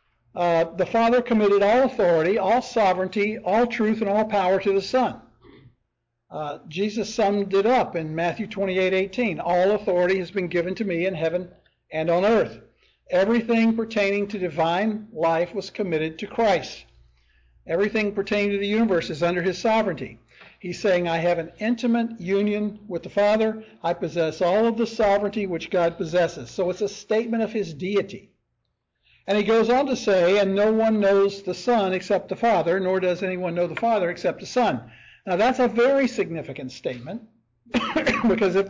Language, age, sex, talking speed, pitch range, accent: English, 60-79, male, 175 wpm, 175-220 Hz, American